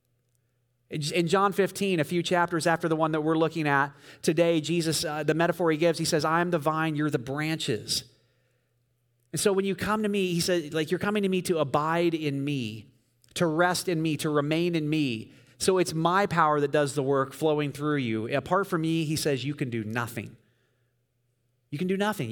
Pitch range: 125-175 Hz